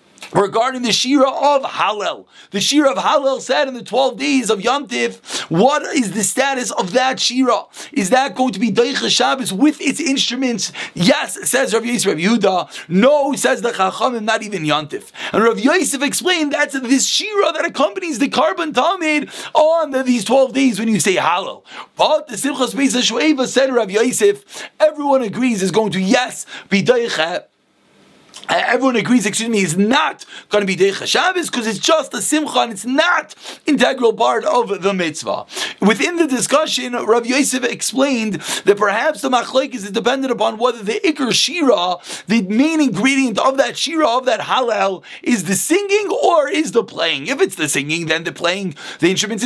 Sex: male